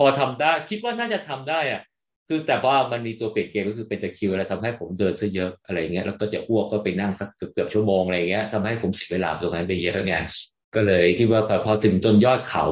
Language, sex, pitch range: Thai, male, 100-115 Hz